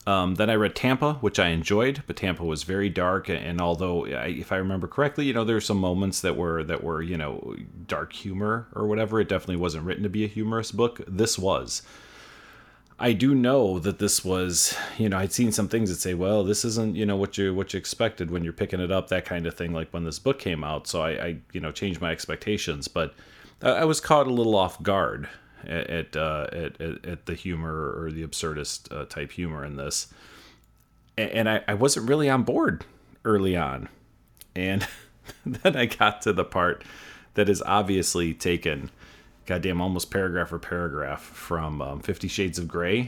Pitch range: 85-110 Hz